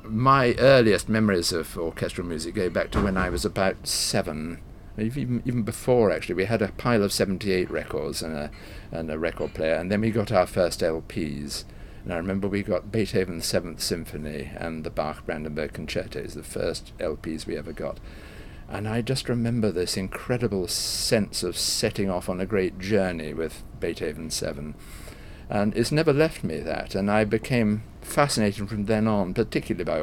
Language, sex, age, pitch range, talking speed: English, male, 50-69, 90-110 Hz, 180 wpm